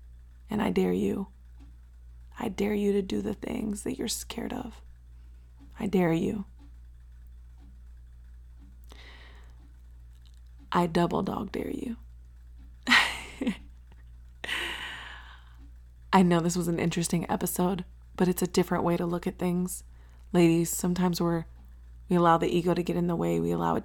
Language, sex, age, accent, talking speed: English, female, 20-39, American, 135 wpm